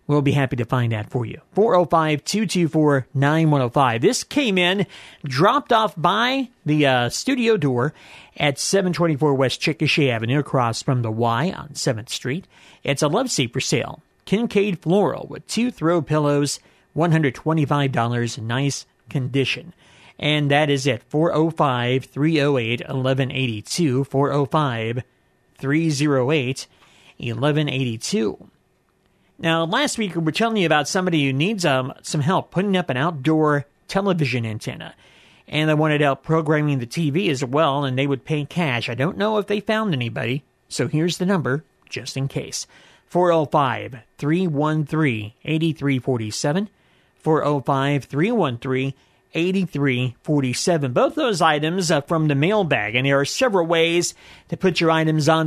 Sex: male